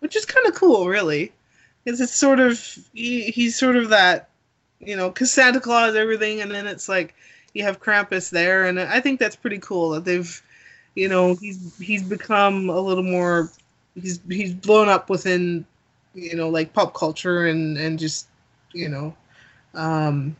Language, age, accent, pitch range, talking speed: English, 20-39, American, 170-225 Hz, 180 wpm